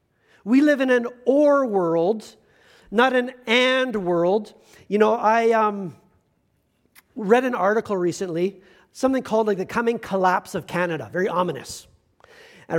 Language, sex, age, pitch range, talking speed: English, male, 40-59, 190-260 Hz, 135 wpm